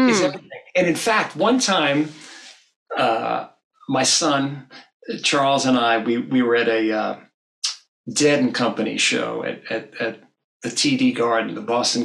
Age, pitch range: 40-59, 115-155 Hz